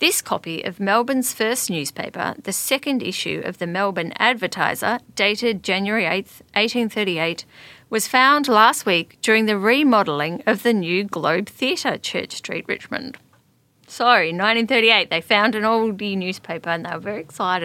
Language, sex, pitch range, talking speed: English, female, 180-230 Hz, 150 wpm